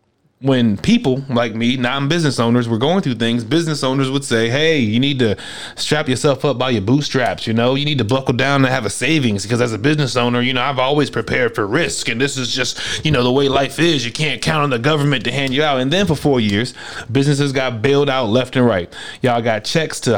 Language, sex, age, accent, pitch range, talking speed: English, male, 30-49, American, 125-170 Hz, 245 wpm